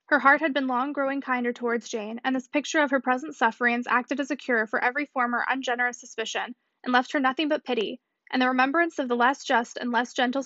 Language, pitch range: English, 245-290 Hz